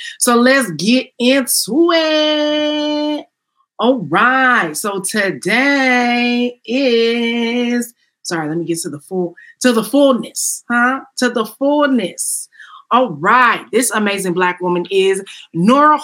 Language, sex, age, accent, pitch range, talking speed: English, female, 30-49, American, 175-245 Hz, 120 wpm